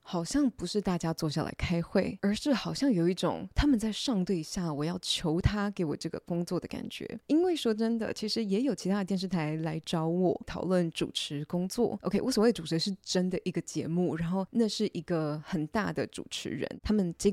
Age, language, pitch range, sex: 20-39, Chinese, 165-220 Hz, female